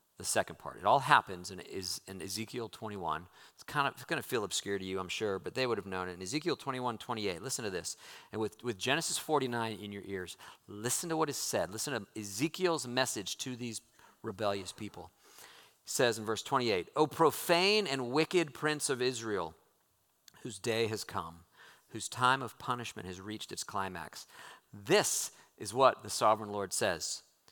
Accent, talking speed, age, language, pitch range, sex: American, 190 wpm, 50-69, English, 105-150 Hz, male